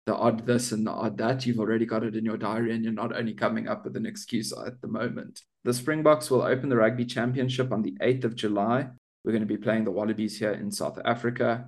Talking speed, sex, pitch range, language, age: 250 wpm, male, 105-125 Hz, English, 20-39